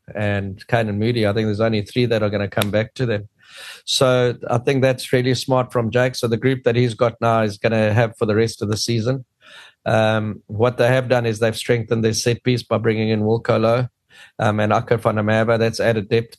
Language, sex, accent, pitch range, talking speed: English, male, South African, 110-125 Hz, 240 wpm